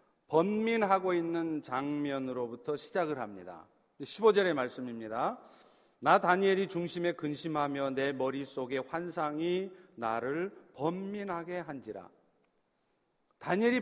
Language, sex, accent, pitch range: Korean, male, native, 160-220 Hz